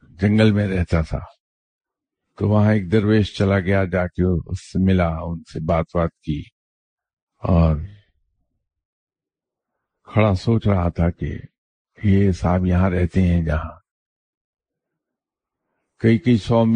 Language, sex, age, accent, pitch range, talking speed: English, male, 50-69, Indian, 85-105 Hz, 105 wpm